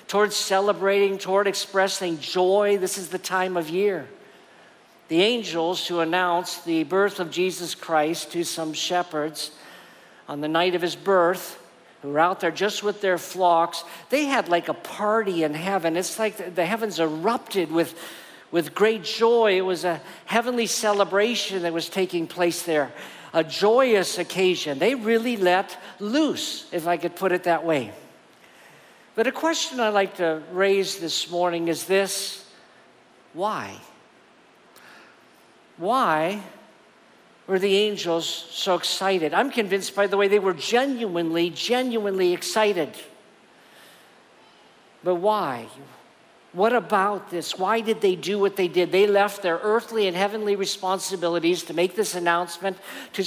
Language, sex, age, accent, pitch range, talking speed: English, male, 50-69, American, 170-205 Hz, 145 wpm